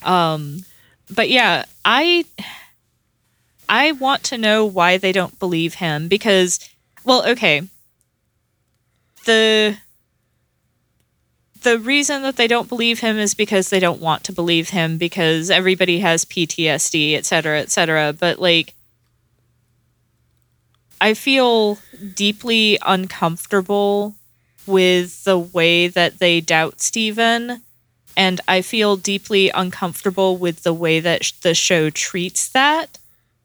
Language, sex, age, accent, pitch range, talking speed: English, female, 20-39, American, 165-210 Hz, 120 wpm